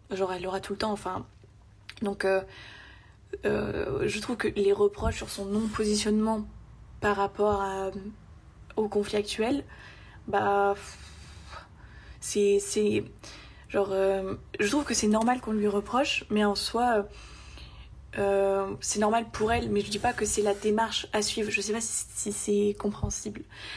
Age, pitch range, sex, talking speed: 20-39, 195-215 Hz, female, 165 wpm